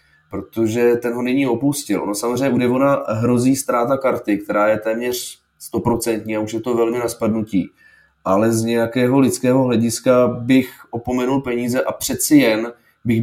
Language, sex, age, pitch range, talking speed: Czech, male, 20-39, 115-130 Hz, 155 wpm